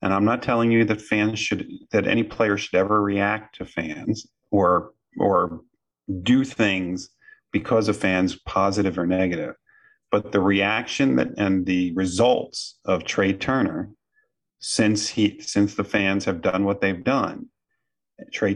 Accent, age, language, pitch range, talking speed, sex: American, 40-59, English, 95-115 Hz, 150 wpm, male